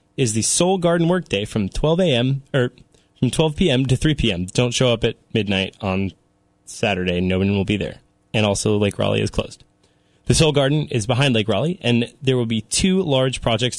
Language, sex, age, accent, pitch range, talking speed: English, male, 20-39, American, 115-145 Hz, 205 wpm